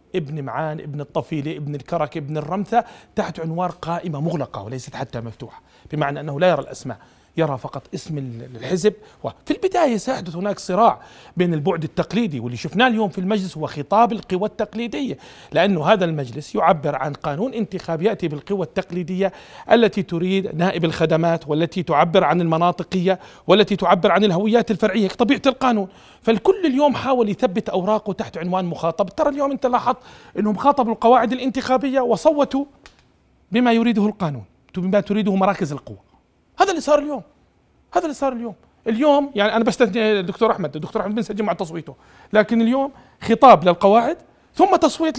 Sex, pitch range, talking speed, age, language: male, 170-240 Hz, 150 wpm, 40-59, Arabic